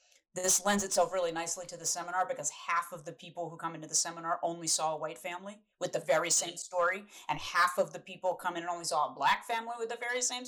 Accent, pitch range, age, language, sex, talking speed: American, 160-195 Hz, 30-49, English, female, 260 wpm